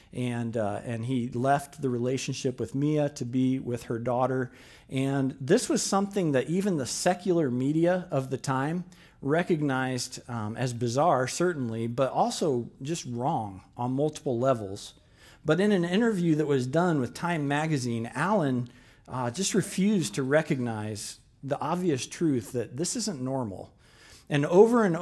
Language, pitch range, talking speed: English, 125-165 Hz, 155 wpm